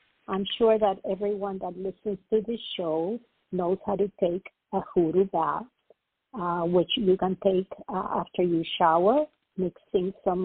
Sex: female